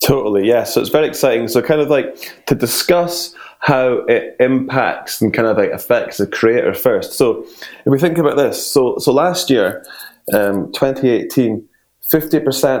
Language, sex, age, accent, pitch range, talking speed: English, male, 20-39, British, 105-145 Hz, 170 wpm